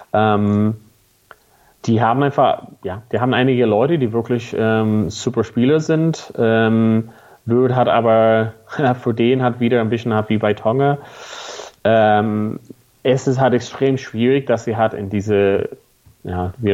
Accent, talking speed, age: German, 150 wpm, 30-49